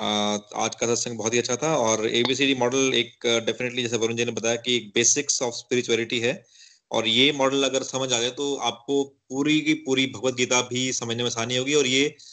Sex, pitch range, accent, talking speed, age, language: male, 120-150 Hz, native, 220 wpm, 30-49, Hindi